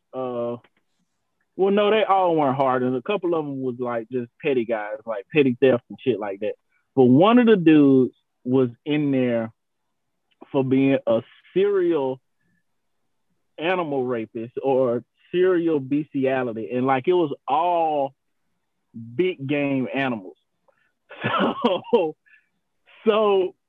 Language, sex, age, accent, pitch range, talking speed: English, male, 30-49, American, 135-195 Hz, 130 wpm